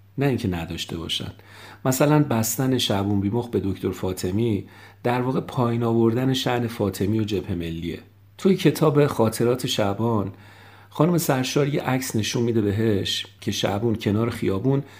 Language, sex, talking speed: English, male, 140 wpm